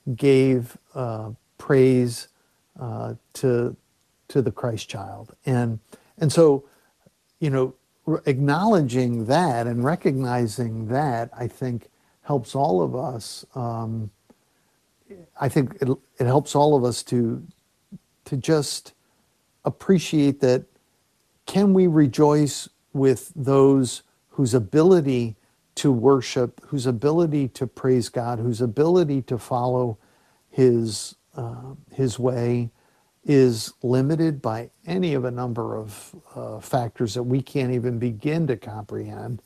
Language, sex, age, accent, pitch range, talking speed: English, male, 50-69, American, 120-145 Hz, 120 wpm